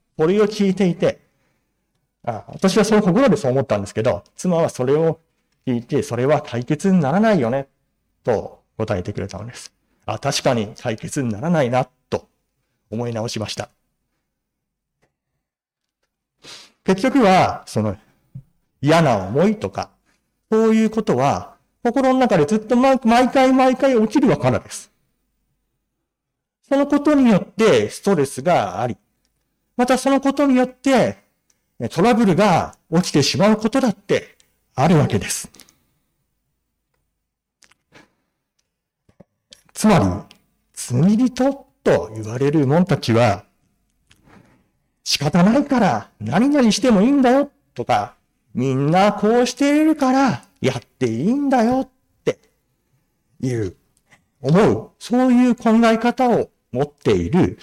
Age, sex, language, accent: 40-59, male, Japanese, native